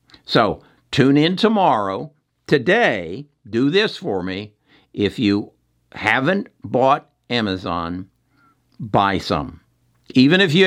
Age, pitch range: 60-79, 95-135 Hz